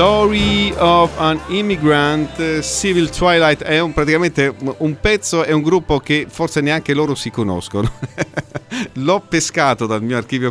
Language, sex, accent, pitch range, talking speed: Italian, male, native, 110-150 Hz, 150 wpm